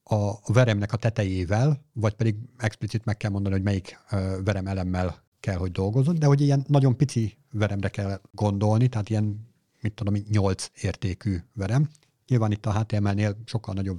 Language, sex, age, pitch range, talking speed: Hungarian, male, 50-69, 105-130 Hz, 165 wpm